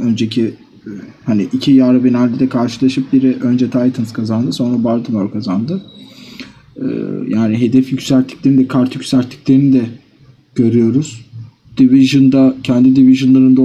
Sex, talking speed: male, 110 wpm